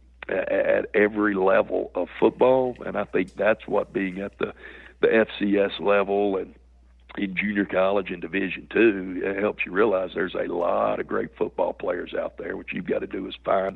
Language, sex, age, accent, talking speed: English, male, 60-79, American, 185 wpm